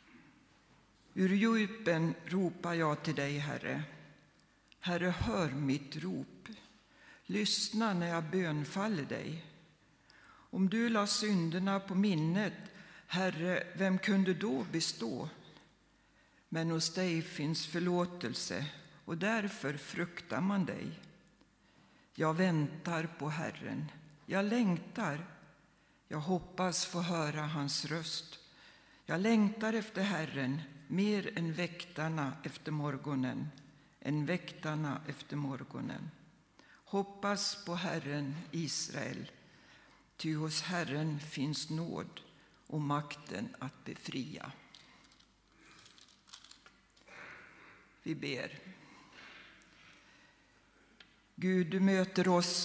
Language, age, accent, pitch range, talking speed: Swedish, 60-79, native, 150-185 Hz, 90 wpm